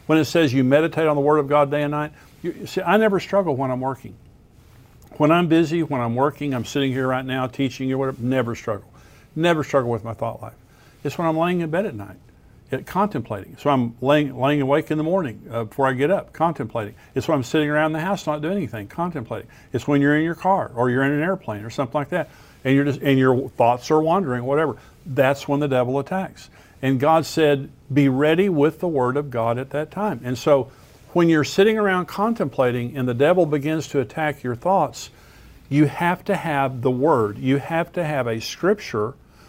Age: 50-69